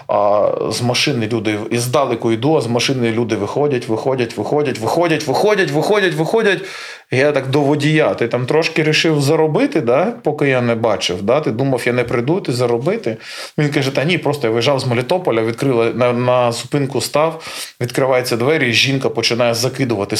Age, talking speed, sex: 20-39, 180 wpm, male